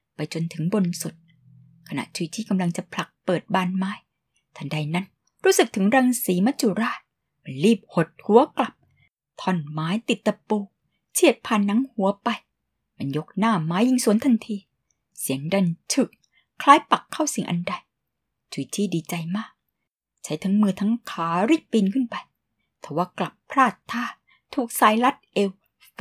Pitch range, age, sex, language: 170-230 Hz, 20-39, female, Thai